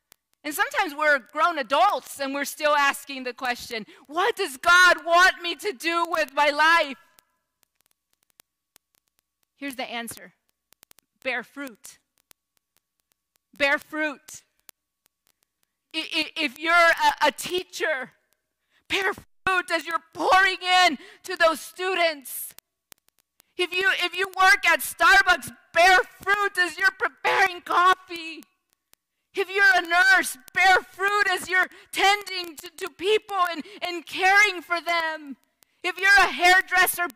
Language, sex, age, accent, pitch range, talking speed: English, female, 40-59, American, 320-380 Hz, 125 wpm